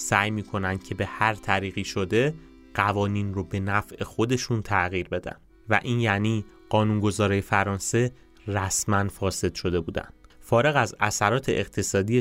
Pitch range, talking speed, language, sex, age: 95-110 Hz, 135 wpm, Persian, male, 30-49